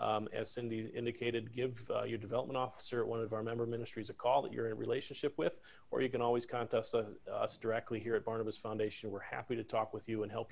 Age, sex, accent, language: 40-59, male, American, English